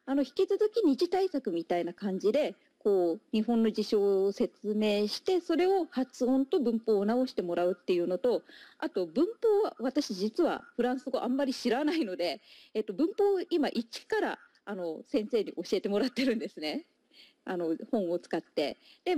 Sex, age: female, 40-59